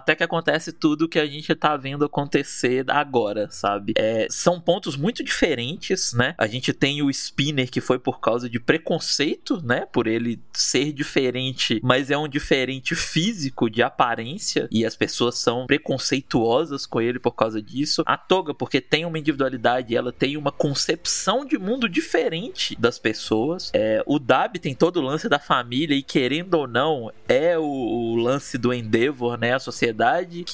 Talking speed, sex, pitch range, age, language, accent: 175 wpm, male, 120-160 Hz, 20-39, Portuguese, Brazilian